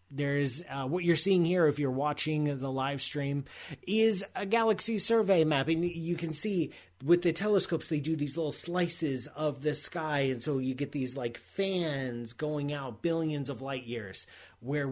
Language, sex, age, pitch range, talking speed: English, male, 30-49, 130-175 Hz, 185 wpm